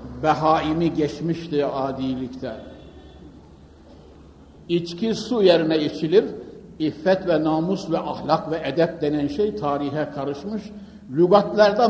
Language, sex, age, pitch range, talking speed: Turkish, male, 60-79, 145-200 Hz, 95 wpm